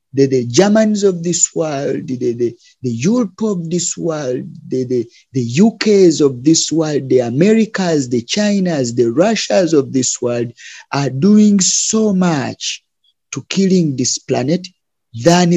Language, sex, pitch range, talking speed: English, male, 130-180 Hz, 145 wpm